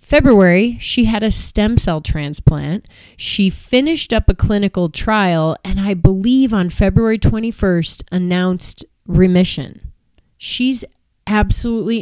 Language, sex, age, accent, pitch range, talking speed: English, female, 30-49, American, 175-220 Hz, 115 wpm